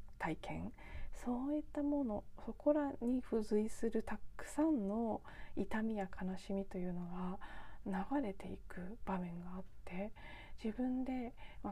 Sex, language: female, Japanese